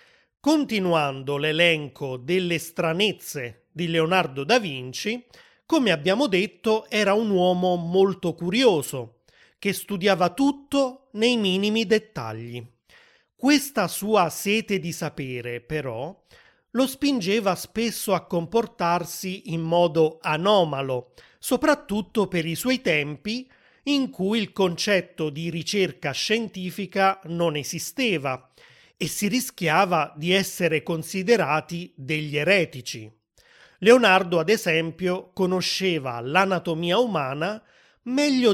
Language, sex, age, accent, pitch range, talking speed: Italian, male, 30-49, native, 160-215 Hz, 100 wpm